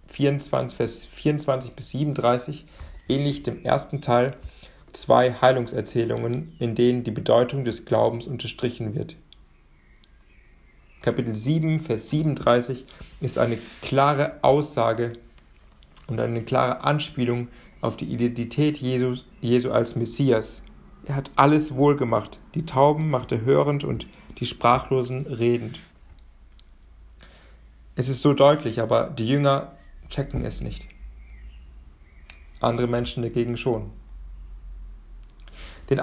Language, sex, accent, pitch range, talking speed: German, male, German, 105-140 Hz, 110 wpm